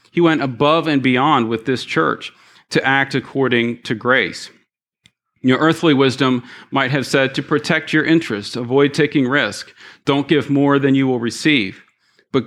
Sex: male